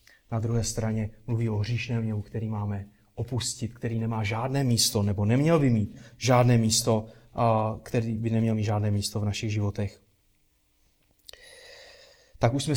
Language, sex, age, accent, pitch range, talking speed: Czech, male, 30-49, native, 115-165 Hz, 150 wpm